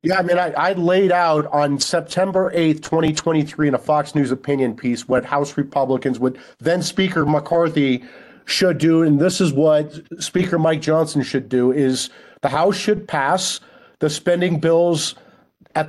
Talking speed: 165 wpm